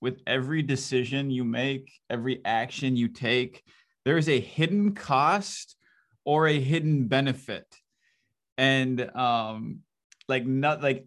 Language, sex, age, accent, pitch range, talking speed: English, male, 20-39, American, 120-145 Hz, 125 wpm